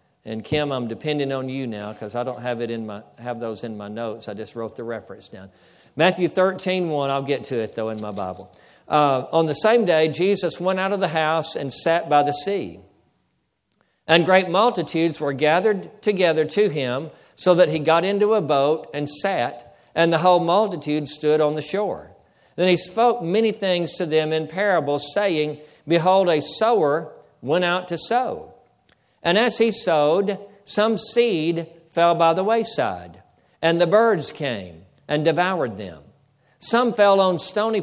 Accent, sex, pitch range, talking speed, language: American, male, 150-190 Hz, 180 wpm, English